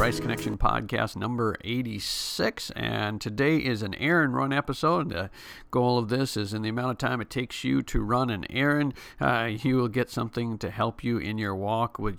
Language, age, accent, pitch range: English, 50-69, American, 105-130 Hz